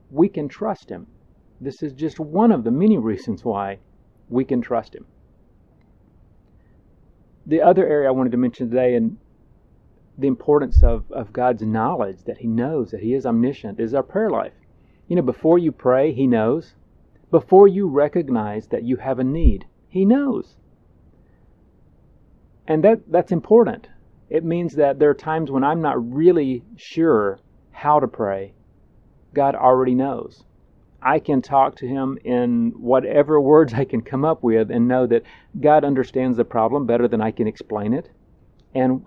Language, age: English, 40-59